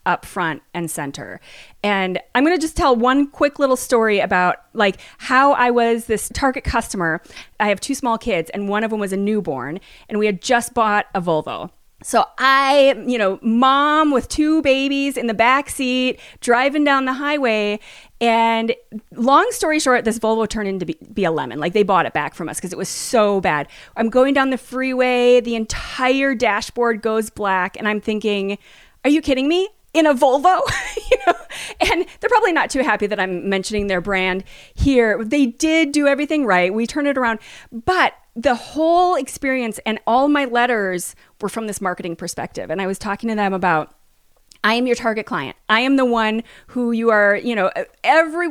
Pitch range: 215-290 Hz